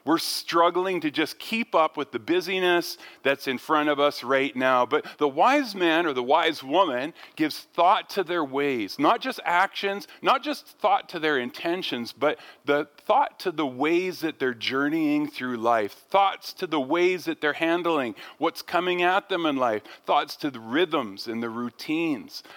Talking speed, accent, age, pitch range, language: 185 wpm, American, 40-59, 135-195 Hz, English